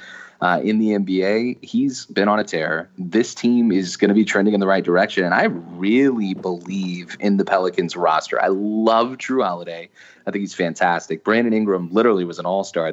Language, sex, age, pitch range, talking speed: English, male, 30-49, 95-125 Hz, 195 wpm